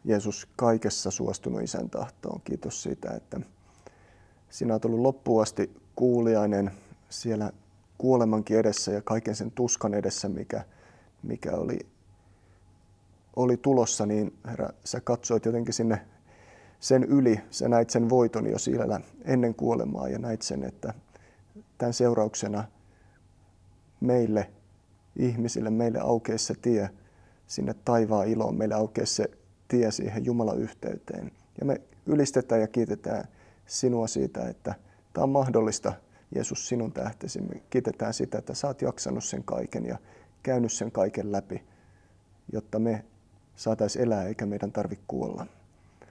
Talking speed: 130 wpm